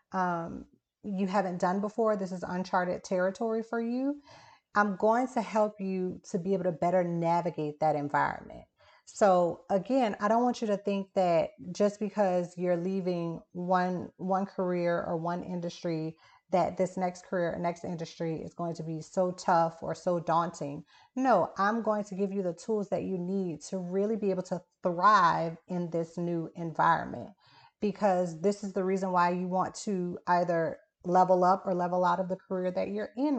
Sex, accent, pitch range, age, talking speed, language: female, American, 175-200 Hz, 30-49, 180 wpm, English